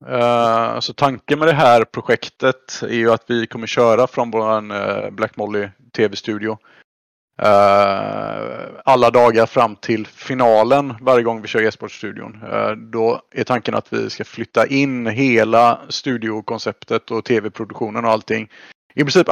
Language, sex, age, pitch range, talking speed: English, male, 30-49, 110-125 Hz, 145 wpm